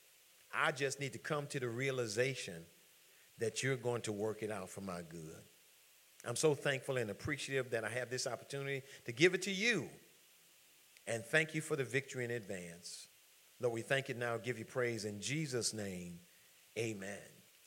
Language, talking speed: English, 180 wpm